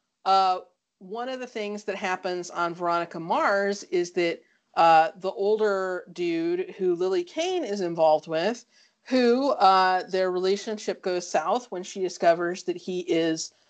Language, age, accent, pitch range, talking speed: English, 30-49, American, 170-235 Hz, 150 wpm